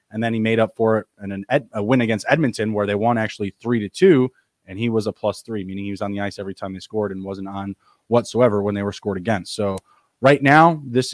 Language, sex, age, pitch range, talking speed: English, male, 20-39, 105-125 Hz, 260 wpm